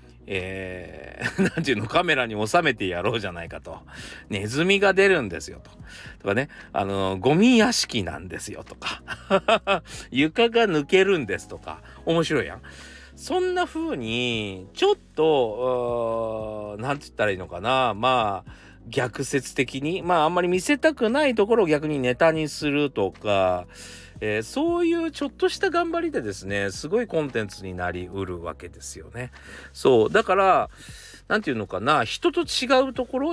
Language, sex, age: Japanese, male, 40-59